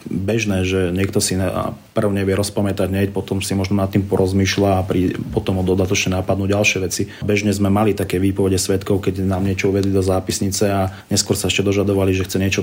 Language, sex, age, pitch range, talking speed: Slovak, male, 30-49, 95-105 Hz, 195 wpm